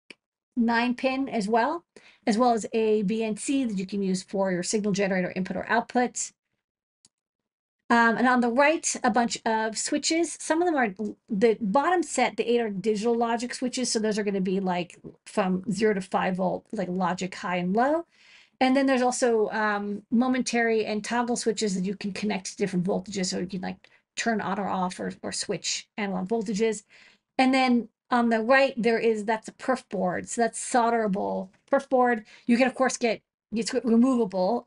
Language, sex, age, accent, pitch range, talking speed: English, female, 40-59, American, 200-245 Hz, 190 wpm